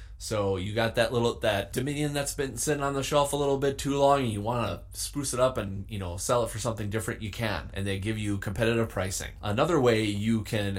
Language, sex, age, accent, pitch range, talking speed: English, male, 20-39, American, 105-135 Hz, 245 wpm